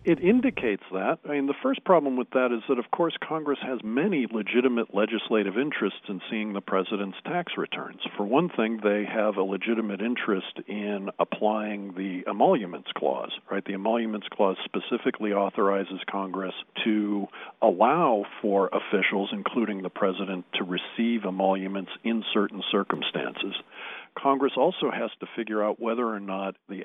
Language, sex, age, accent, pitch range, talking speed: English, male, 50-69, American, 100-120 Hz, 155 wpm